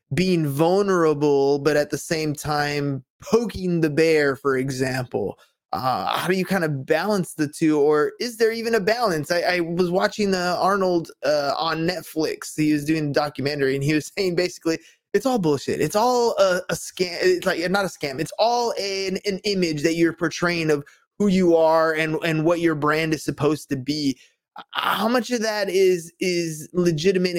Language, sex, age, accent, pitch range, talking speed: English, male, 20-39, American, 150-185 Hz, 190 wpm